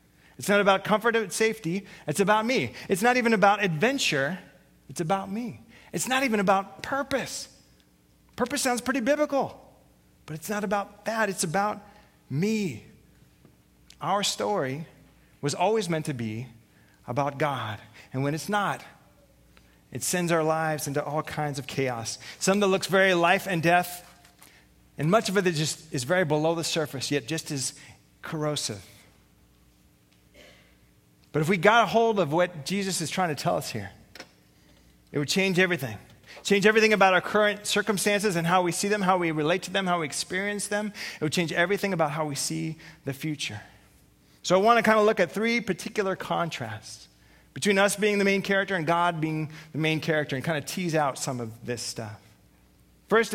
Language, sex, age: English, male, 30-49